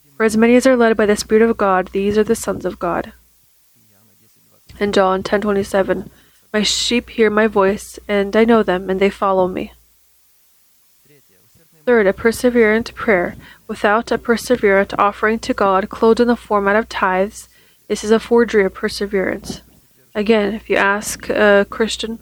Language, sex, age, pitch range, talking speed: English, female, 20-39, 195-220 Hz, 170 wpm